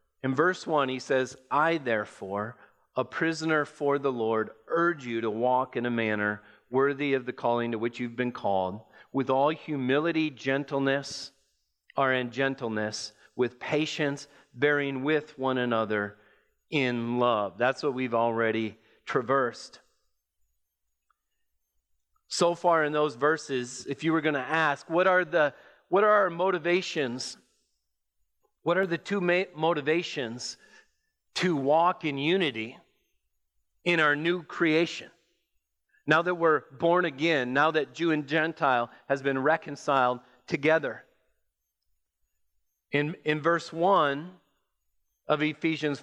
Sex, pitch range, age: male, 115-160 Hz, 40-59